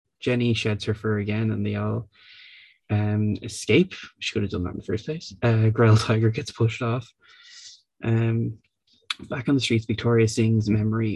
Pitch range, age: 110-125 Hz, 20-39